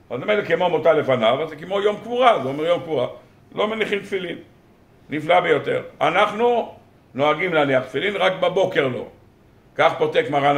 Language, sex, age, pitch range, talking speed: Hebrew, male, 50-69, 140-205 Hz, 165 wpm